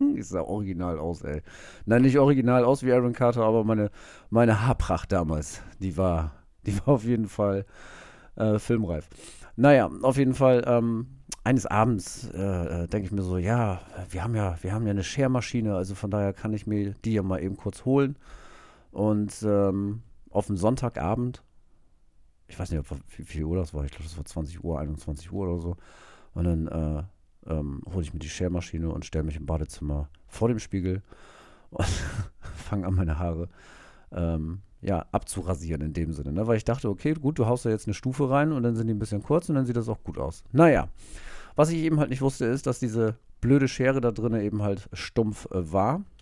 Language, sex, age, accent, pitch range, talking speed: German, male, 40-59, German, 85-120 Hz, 205 wpm